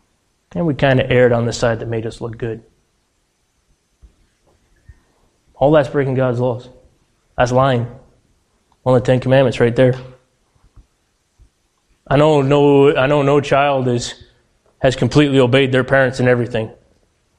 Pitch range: 120-145 Hz